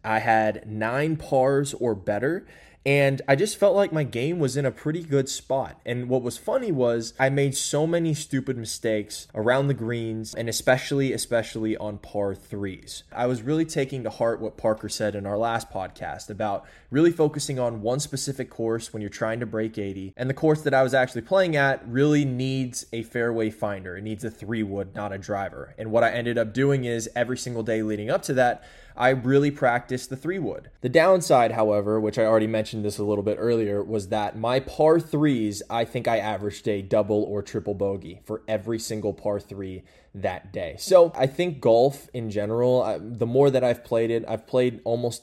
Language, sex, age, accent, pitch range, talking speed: English, male, 20-39, American, 110-130 Hz, 205 wpm